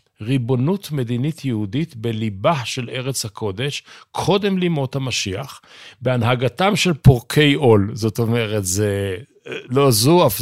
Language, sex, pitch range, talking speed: Hebrew, male, 110-140 Hz, 115 wpm